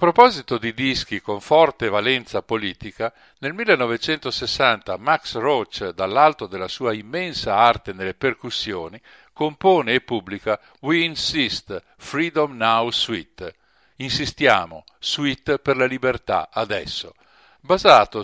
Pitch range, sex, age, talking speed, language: 110-150 Hz, male, 50-69, 110 wpm, Italian